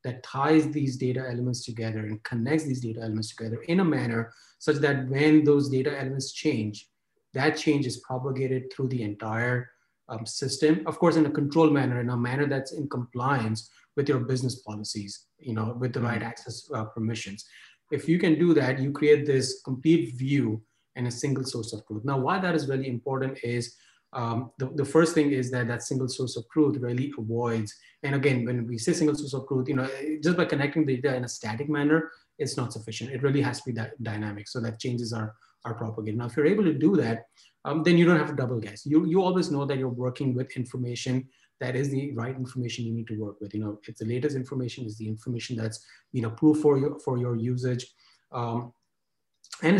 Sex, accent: male, Indian